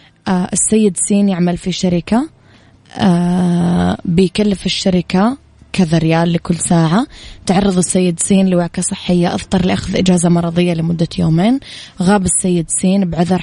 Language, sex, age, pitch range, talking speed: Arabic, female, 20-39, 165-190 Hz, 120 wpm